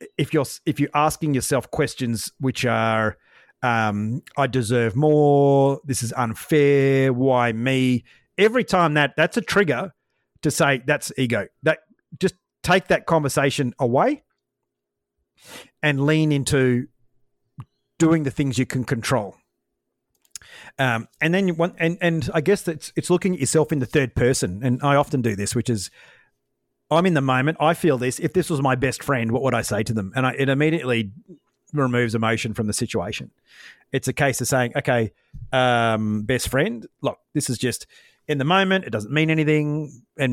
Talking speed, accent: 175 wpm, Australian